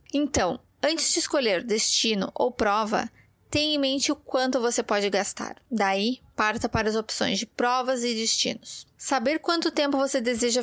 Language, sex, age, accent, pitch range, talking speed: Portuguese, female, 20-39, Brazilian, 220-275 Hz, 165 wpm